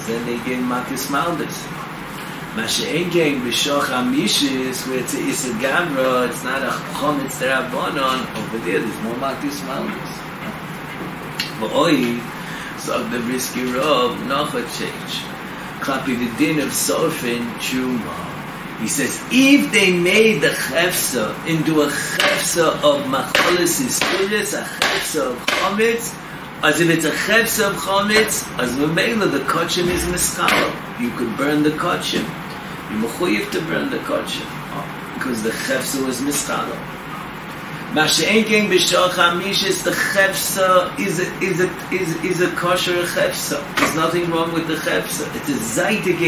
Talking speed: 145 wpm